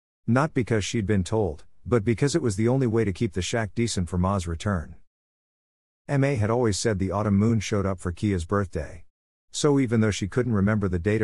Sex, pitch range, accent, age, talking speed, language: male, 90-115 Hz, American, 50-69, 215 wpm, English